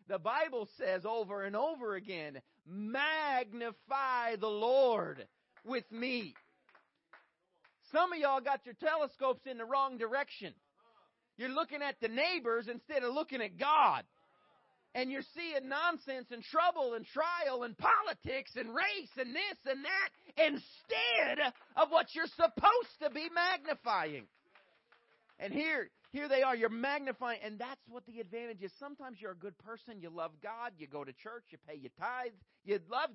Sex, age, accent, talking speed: male, 40-59, American, 155 wpm